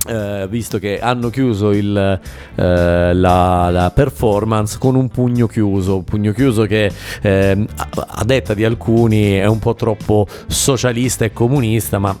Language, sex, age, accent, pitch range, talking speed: Italian, male, 40-59, native, 100-125 Hz, 150 wpm